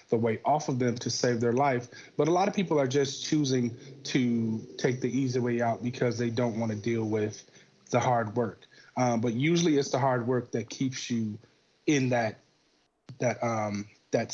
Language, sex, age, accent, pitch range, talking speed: English, male, 30-49, American, 115-135 Hz, 200 wpm